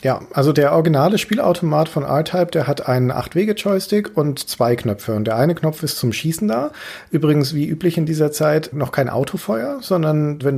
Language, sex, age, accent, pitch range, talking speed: German, male, 40-59, German, 125-175 Hz, 200 wpm